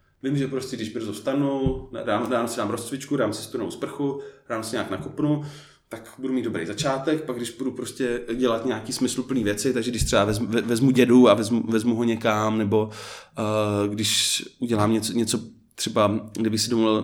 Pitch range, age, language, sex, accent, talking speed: 105-125 Hz, 20-39, Czech, male, native, 185 wpm